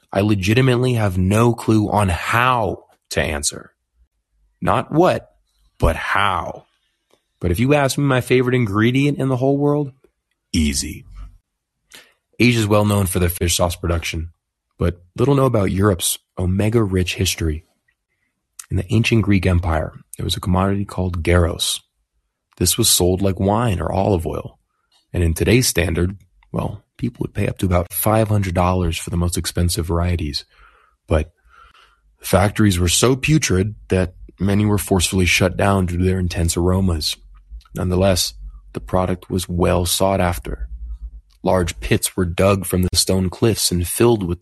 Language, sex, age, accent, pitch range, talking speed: English, male, 30-49, American, 85-100 Hz, 155 wpm